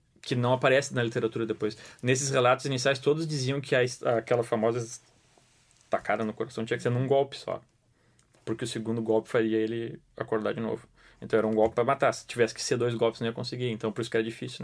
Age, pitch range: 20-39, 115-145 Hz